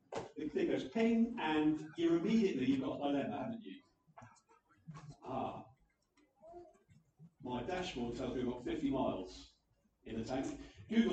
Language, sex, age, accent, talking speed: English, male, 40-59, British, 135 wpm